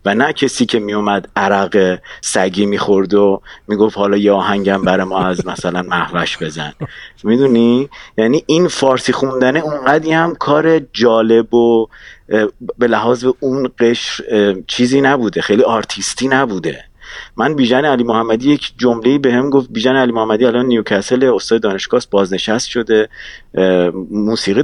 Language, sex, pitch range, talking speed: English, male, 100-130 Hz, 140 wpm